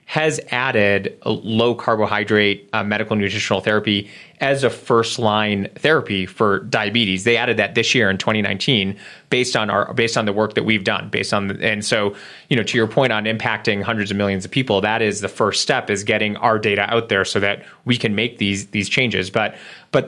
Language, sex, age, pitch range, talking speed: English, male, 30-49, 105-120 Hz, 210 wpm